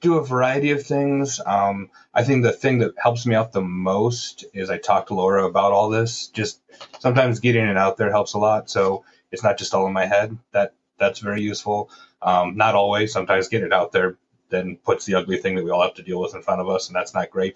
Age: 30-49